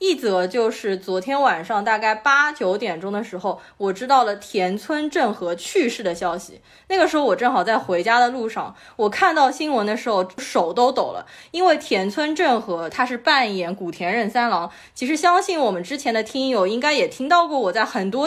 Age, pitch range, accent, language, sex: 20-39, 195-295 Hz, native, Chinese, female